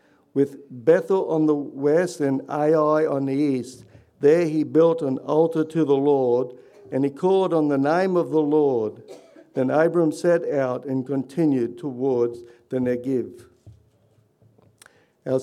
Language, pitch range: English, 130-160 Hz